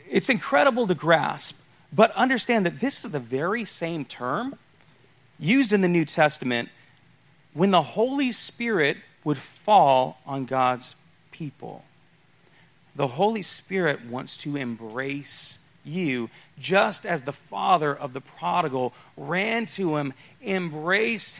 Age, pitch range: 40-59, 130-185 Hz